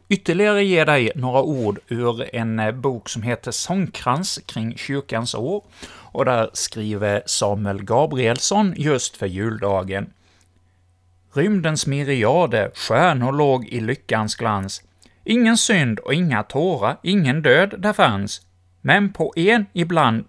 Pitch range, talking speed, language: 110-165 Hz, 125 wpm, Swedish